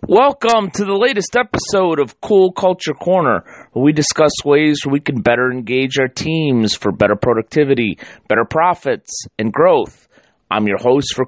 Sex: male